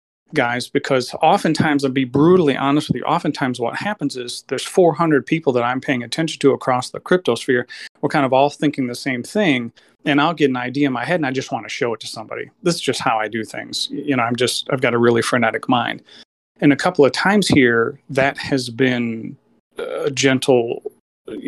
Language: English